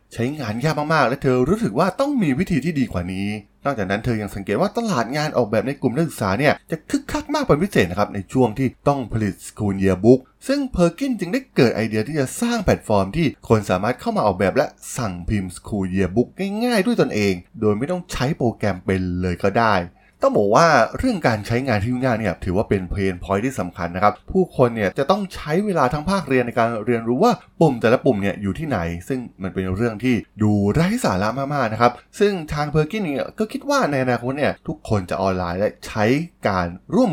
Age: 20-39